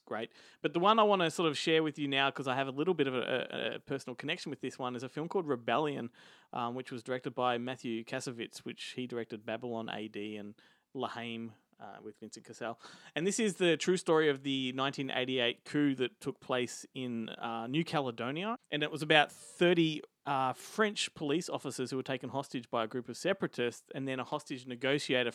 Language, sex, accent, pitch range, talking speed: English, male, Australian, 125-150 Hz, 215 wpm